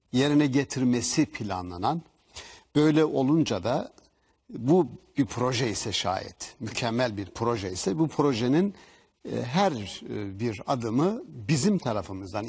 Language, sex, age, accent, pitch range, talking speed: Turkish, male, 60-79, native, 115-170 Hz, 105 wpm